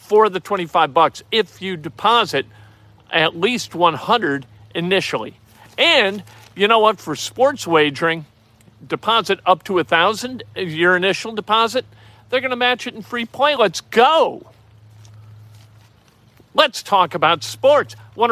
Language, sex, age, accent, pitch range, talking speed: English, male, 50-69, American, 130-210 Hz, 135 wpm